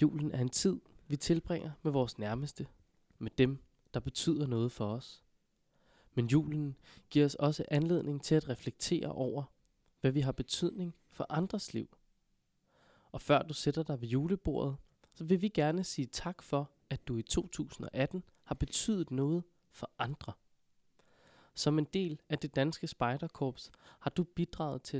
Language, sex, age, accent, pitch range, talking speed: Danish, male, 20-39, native, 130-160 Hz, 160 wpm